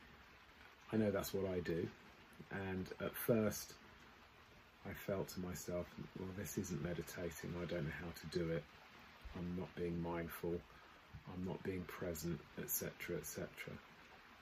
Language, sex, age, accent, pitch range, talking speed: English, male, 30-49, British, 85-105 Hz, 140 wpm